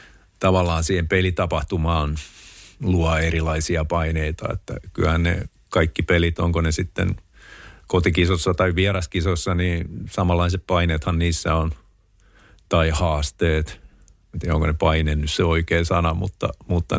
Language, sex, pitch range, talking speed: Finnish, male, 80-95 Hz, 120 wpm